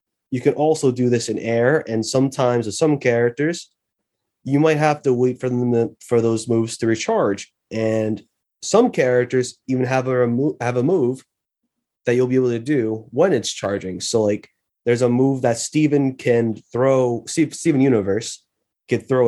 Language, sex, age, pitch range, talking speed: English, male, 20-39, 110-130 Hz, 175 wpm